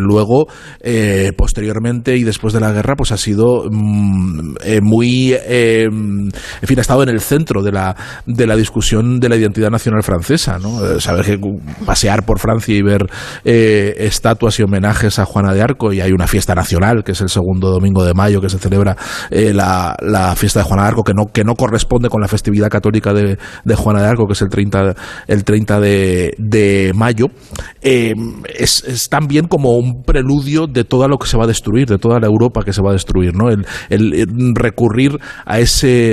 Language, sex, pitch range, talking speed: Spanish, male, 100-120 Hz, 210 wpm